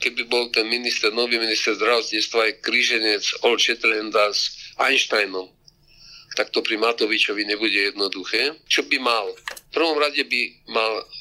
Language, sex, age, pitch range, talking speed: Slovak, male, 50-69, 115-160 Hz, 140 wpm